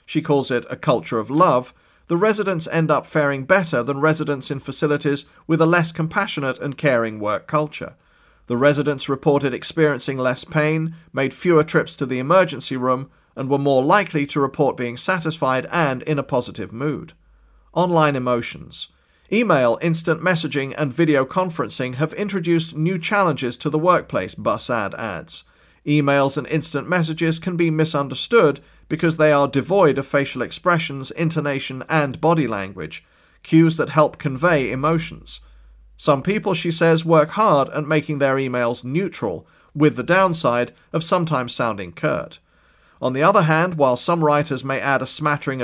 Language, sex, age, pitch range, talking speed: English, male, 40-59, 130-165 Hz, 160 wpm